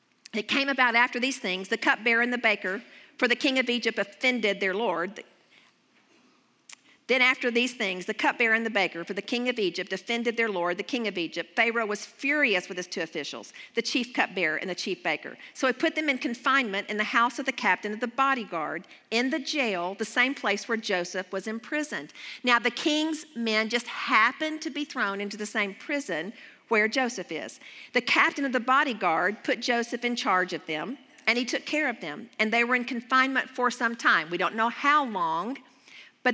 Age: 50-69